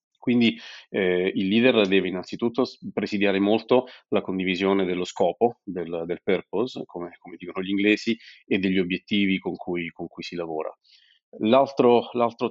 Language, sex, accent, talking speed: Italian, male, native, 140 wpm